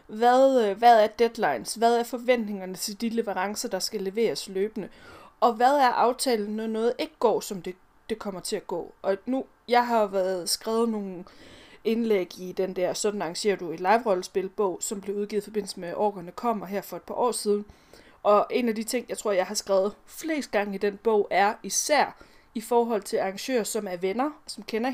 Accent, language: native, Danish